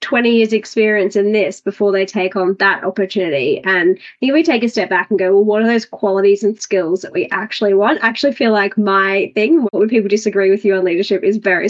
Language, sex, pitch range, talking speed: English, female, 200-220 Hz, 240 wpm